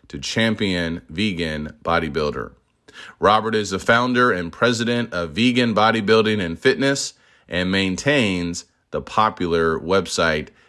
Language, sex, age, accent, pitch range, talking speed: English, male, 30-49, American, 90-115 Hz, 105 wpm